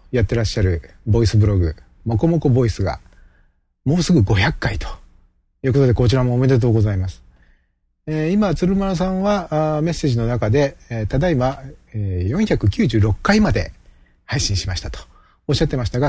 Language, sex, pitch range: Japanese, male, 100-145 Hz